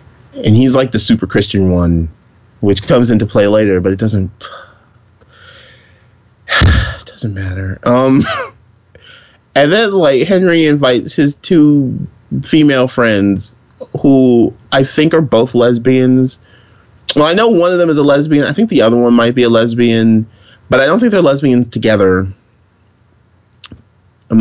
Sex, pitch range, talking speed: male, 100-140 Hz, 145 wpm